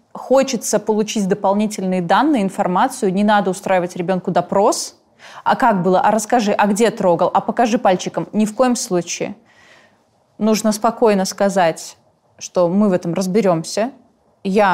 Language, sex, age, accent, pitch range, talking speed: Russian, female, 20-39, native, 185-220 Hz, 140 wpm